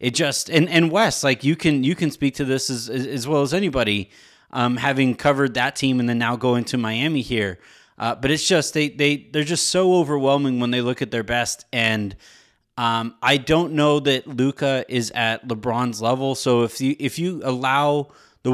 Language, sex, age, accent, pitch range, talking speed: English, male, 20-39, American, 115-145 Hz, 205 wpm